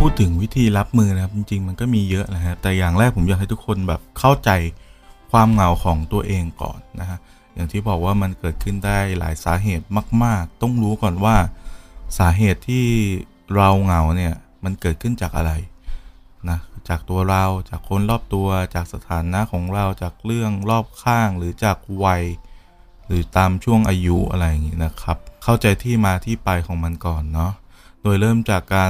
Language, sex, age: Thai, male, 20-39